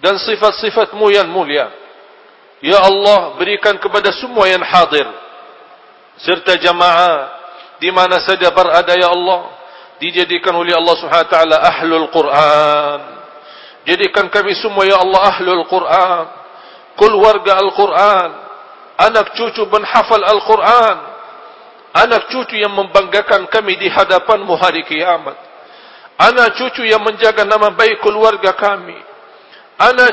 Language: English